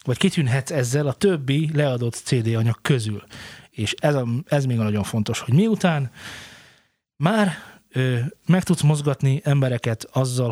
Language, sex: Hungarian, male